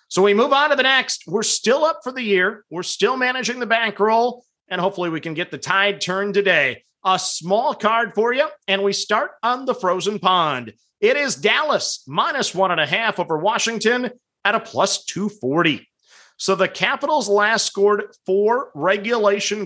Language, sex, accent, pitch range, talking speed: English, male, American, 180-235 Hz, 185 wpm